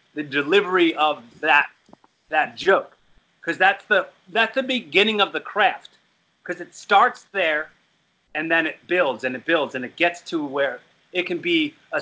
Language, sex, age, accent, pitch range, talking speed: English, male, 30-49, American, 150-200 Hz, 175 wpm